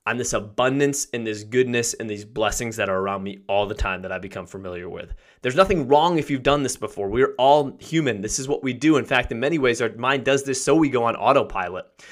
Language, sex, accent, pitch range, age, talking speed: English, male, American, 115-145 Hz, 20-39, 255 wpm